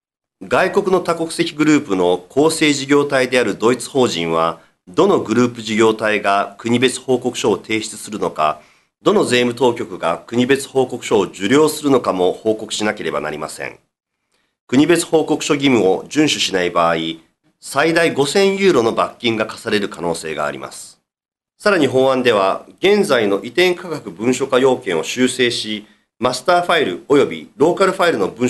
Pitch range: 105-160 Hz